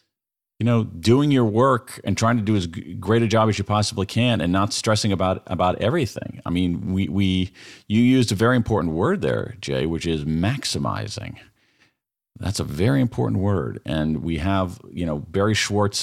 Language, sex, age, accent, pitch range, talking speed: English, male, 40-59, American, 85-110 Hz, 185 wpm